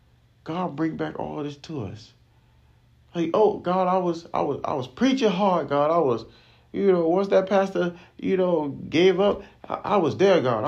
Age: 40-59